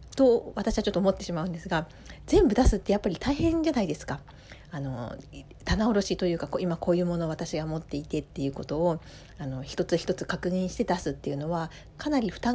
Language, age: Japanese, 40-59